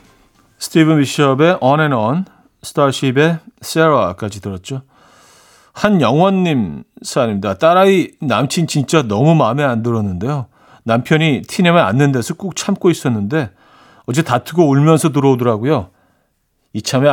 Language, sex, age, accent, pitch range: Korean, male, 40-59, native, 110-160 Hz